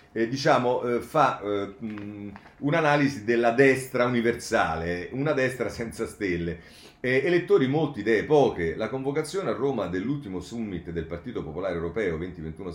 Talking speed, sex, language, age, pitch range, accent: 140 wpm, male, Italian, 40-59, 80-125 Hz, native